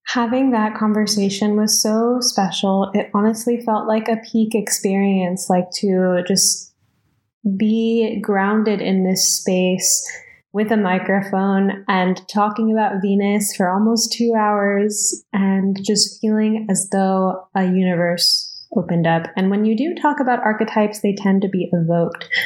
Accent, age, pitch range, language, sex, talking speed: American, 10-29, 180-215 Hz, English, female, 140 wpm